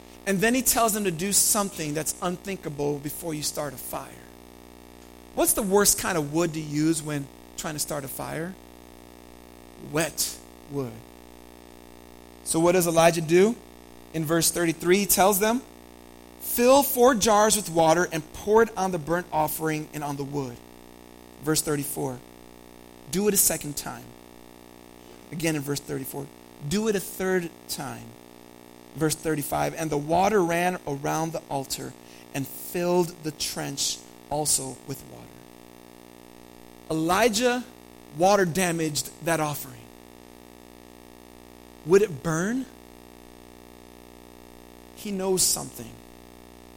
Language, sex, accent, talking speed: English, male, American, 130 wpm